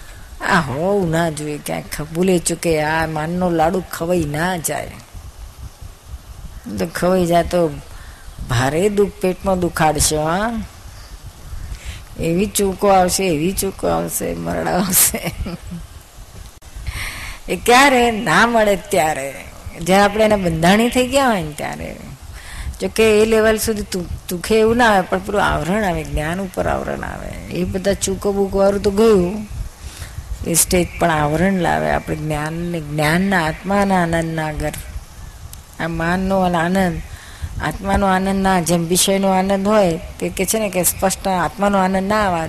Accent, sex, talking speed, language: native, female, 110 wpm, Gujarati